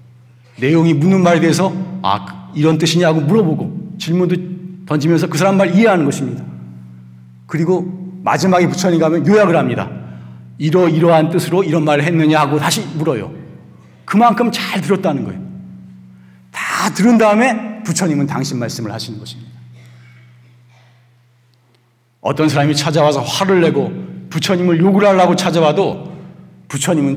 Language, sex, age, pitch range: Korean, male, 40-59, 120-180 Hz